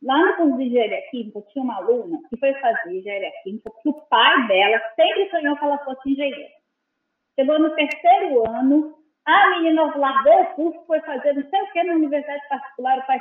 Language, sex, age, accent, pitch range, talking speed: Portuguese, female, 30-49, Brazilian, 270-355 Hz, 200 wpm